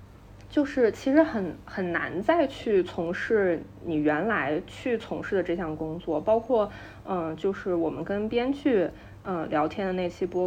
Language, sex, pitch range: Chinese, female, 165-225 Hz